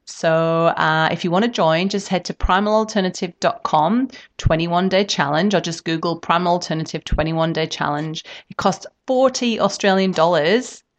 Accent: British